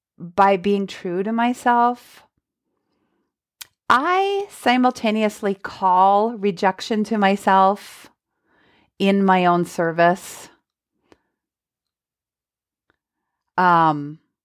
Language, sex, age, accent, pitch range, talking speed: English, female, 30-49, American, 180-235 Hz, 65 wpm